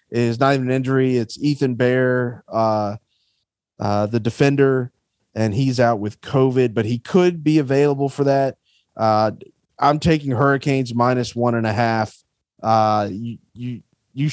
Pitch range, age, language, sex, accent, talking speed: 115-140 Hz, 30-49, English, male, American, 155 wpm